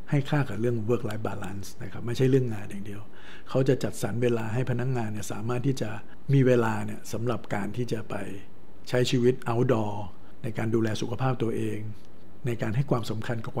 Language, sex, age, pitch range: Thai, male, 60-79, 105-125 Hz